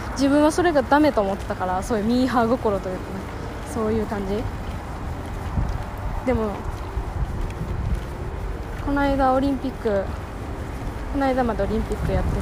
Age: 20-39